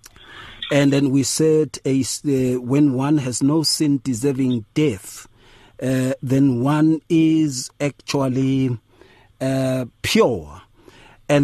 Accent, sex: South African, male